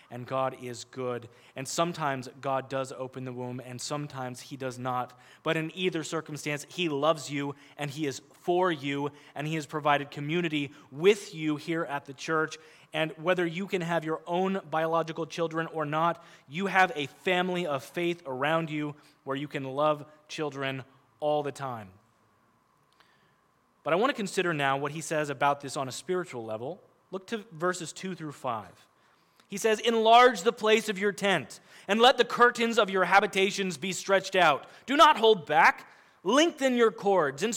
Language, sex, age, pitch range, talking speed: English, male, 20-39, 140-200 Hz, 180 wpm